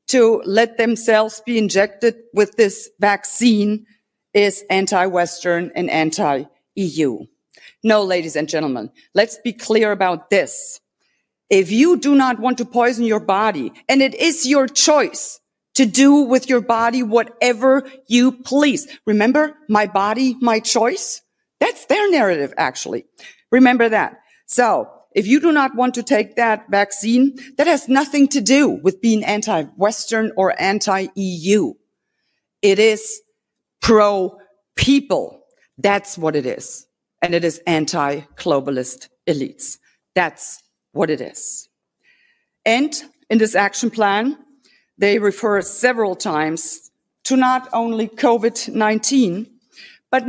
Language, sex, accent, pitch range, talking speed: English, female, German, 205-265 Hz, 125 wpm